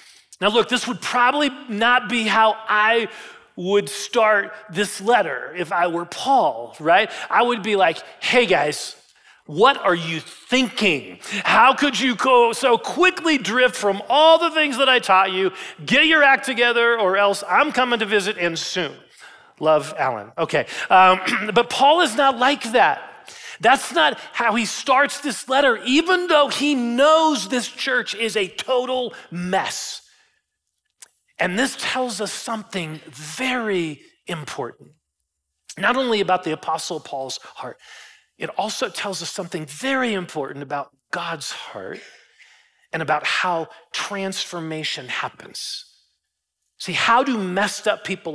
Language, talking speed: English, 145 wpm